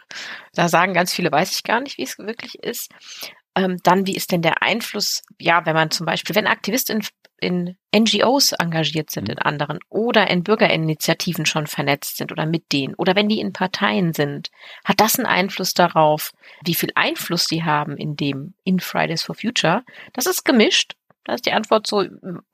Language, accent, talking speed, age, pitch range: German, German, 190 wpm, 30-49, 170-210 Hz